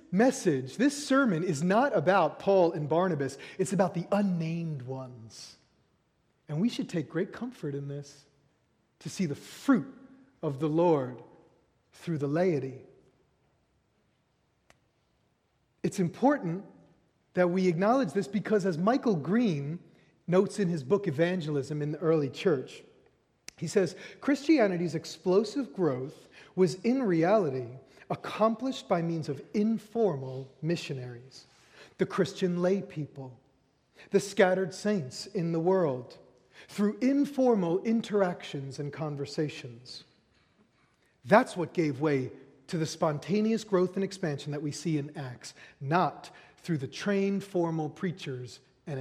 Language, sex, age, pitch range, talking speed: English, male, 30-49, 145-200 Hz, 125 wpm